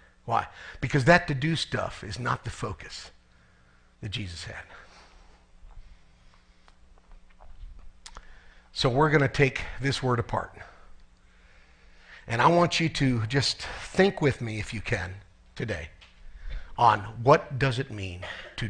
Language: English